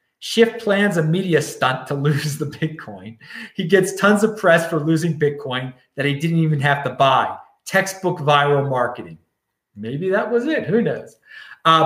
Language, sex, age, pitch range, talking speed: English, male, 30-49, 135-210 Hz, 170 wpm